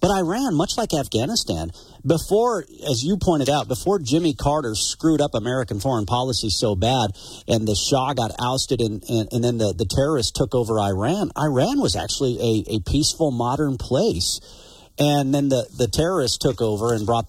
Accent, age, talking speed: American, 50-69, 175 wpm